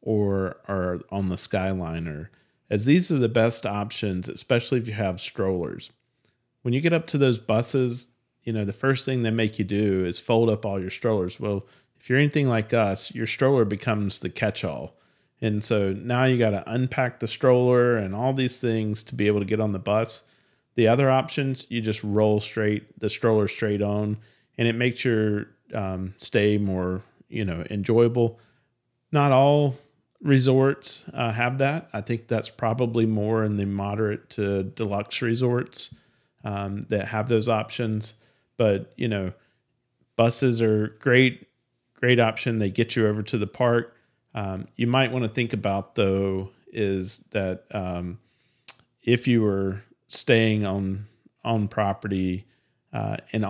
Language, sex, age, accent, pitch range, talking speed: English, male, 40-59, American, 105-120 Hz, 165 wpm